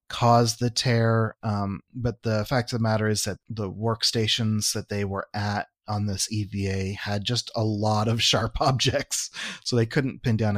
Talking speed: 185 wpm